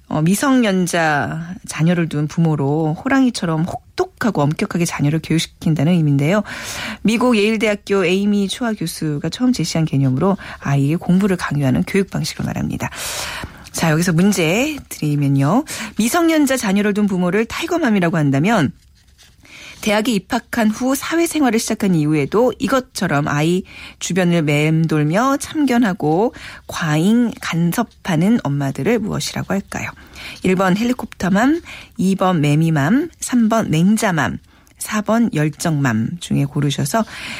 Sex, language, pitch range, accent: female, Korean, 155-225 Hz, native